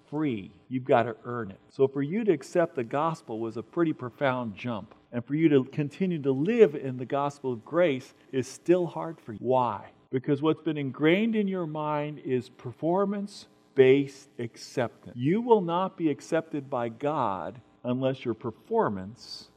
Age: 50-69